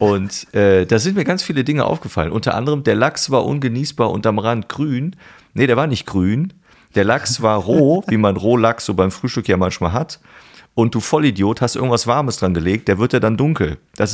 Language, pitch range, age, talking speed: German, 100-140 Hz, 40-59, 220 wpm